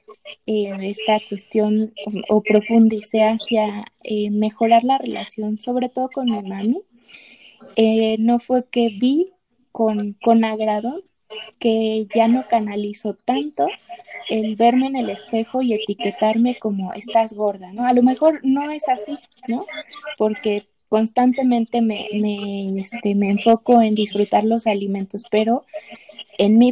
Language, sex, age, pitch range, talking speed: Spanish, female, 20-39, 215-245 Hz, 135 wpm